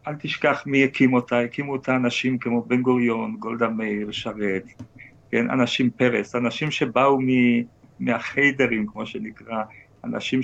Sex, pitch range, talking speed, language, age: male, 120-160 Hz, 140 wpm, Hebrew, 50-69